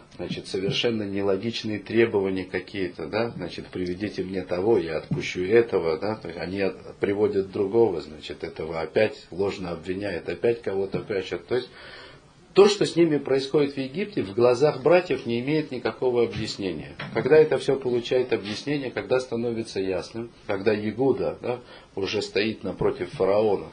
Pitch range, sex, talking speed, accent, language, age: 100-150 Hz, male, 145 wpm, native, Russian, 40-59